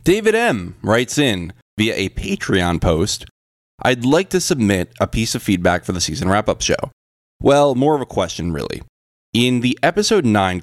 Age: 20-39